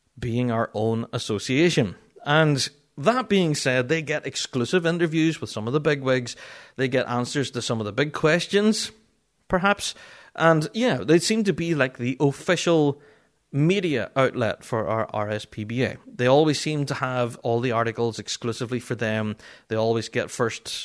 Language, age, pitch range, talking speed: English, 30-49, 115-160 Hz, 160 wpm